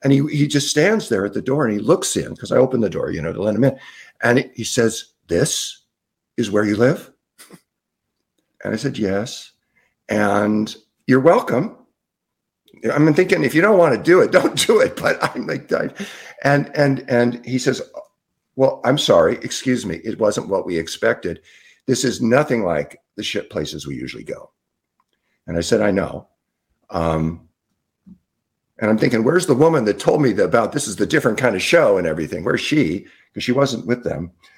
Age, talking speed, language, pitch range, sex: 50-69, 195 wpm, English, 100-135 Hz, male